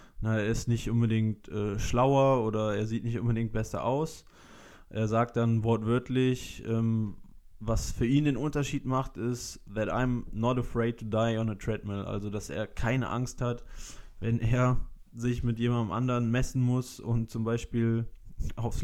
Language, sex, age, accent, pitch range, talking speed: German, male, 20-39, German, 110-125 Hz, 165 wpm